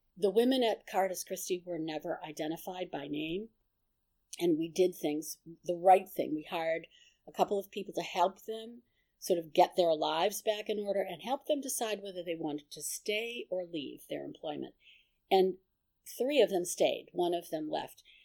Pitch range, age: 175-235 Hz, 50-69